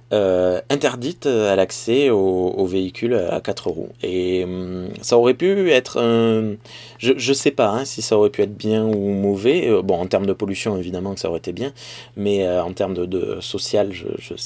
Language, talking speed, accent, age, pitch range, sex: French, 210 wpm, French, 20-39, 95-120 Hz, male